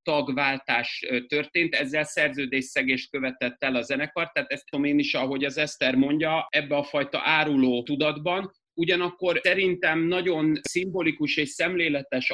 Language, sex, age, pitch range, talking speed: Hungarian, male, 30-49, 135-165 Hz, 135 wpm